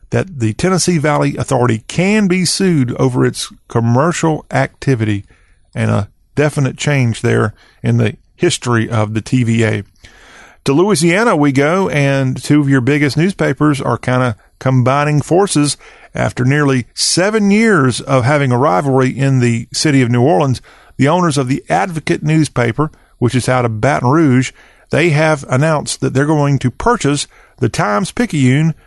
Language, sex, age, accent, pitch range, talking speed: English, male, 40-59, American, 120-155 Hz, 155 wpm